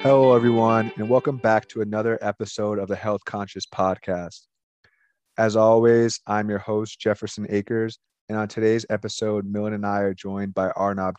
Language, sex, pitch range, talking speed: English, male, 100-110 Hz, 165 wpm